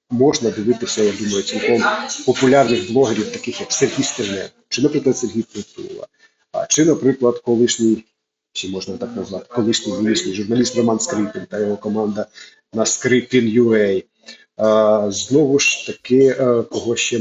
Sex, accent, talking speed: male, native, 130 wpm